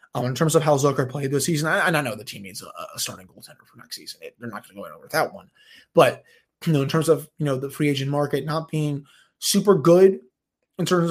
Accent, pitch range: American, 130-160 Hz